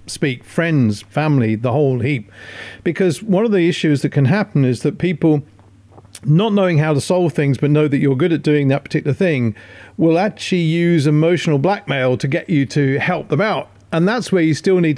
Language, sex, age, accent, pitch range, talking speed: English, male, 50-69, British, 135-175 Hz, 205 wpm